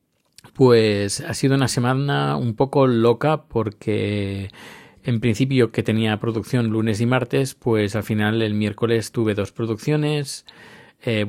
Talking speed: 140 wpm